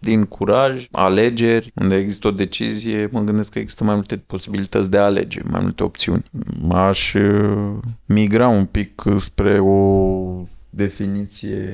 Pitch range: 90-105 Hz